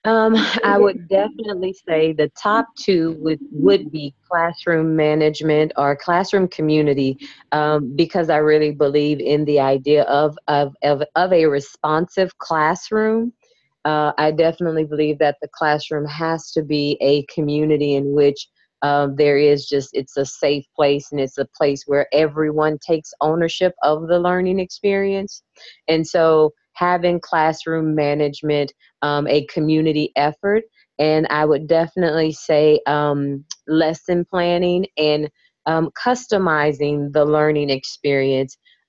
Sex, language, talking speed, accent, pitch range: female, English, 135 wpm, American, 145-170 Hz